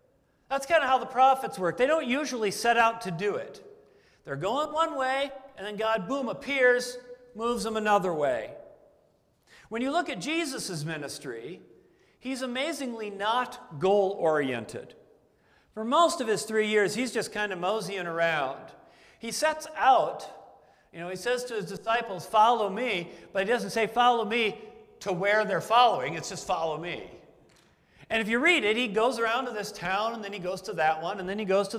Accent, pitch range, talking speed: American, 205-255 Hz, 185 wpm